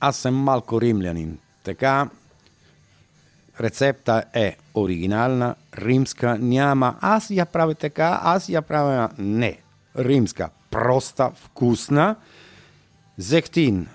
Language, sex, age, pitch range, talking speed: Bulgarian, male, 50-69, 105-150 Hz, 95 wpm